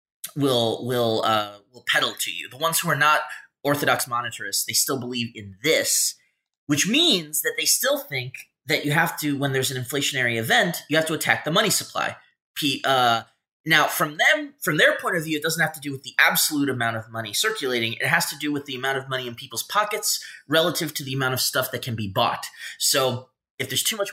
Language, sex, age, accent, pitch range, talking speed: English, male, 30-49, American, 115-155 Hz, 220 wpm